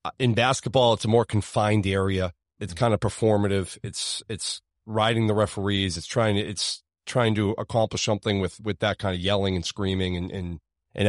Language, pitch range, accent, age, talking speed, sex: English, 100-120 Hz, American, 30-49, 190 wpm, male